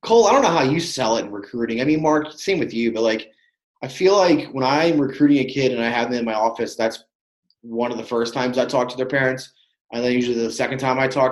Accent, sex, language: American, male, English